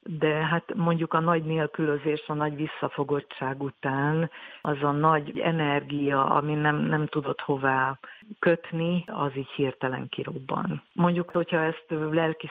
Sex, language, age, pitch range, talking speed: female, Hungarian, 50-69, 140-160 Hz, 135 wpm